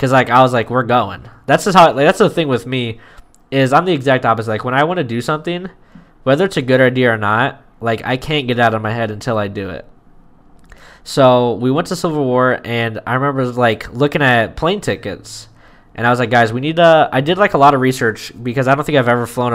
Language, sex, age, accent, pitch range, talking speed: English, male, 10-29, American, 115-140 Hz, 255 wpm